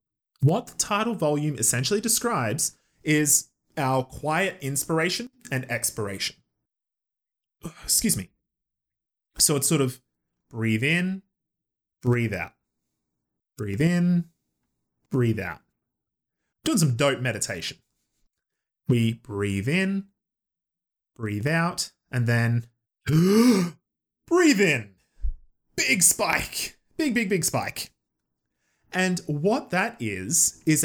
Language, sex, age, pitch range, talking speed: English, male, 20-39, 125-175 Hz, 95 wpm